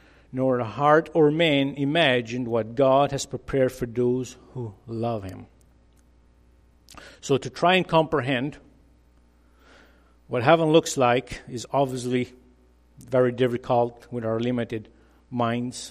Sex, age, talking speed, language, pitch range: male, 50-69, 120 wpm, English, 115-135 Hz